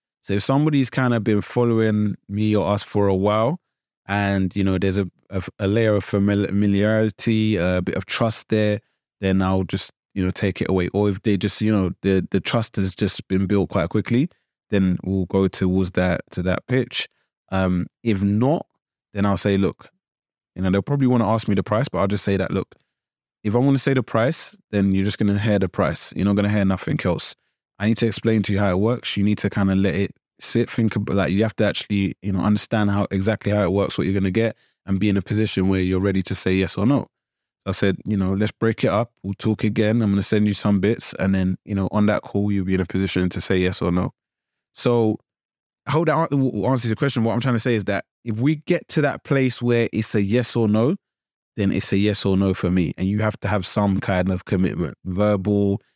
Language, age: English, 20-39